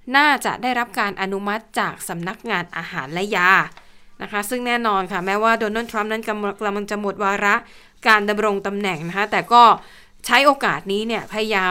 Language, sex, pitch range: Thai, female, 195-245 Hz